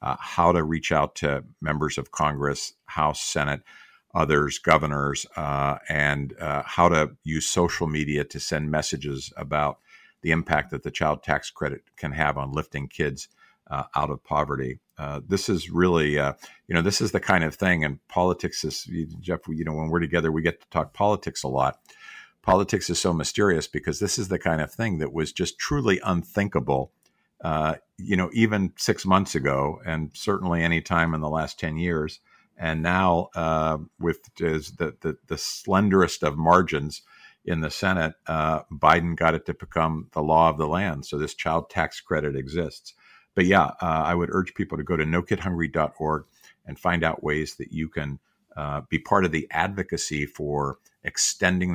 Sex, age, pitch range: male, 50-69, 75-85 Hz